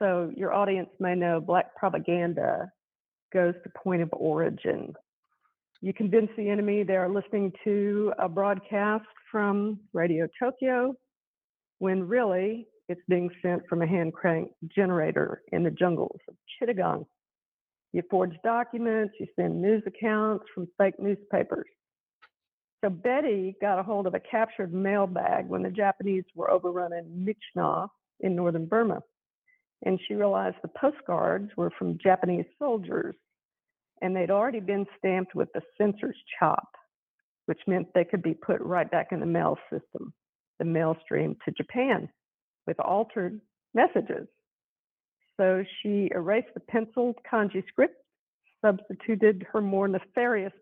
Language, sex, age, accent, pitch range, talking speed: English, female, 50-69, American, 180-215 Hz, 140 wpm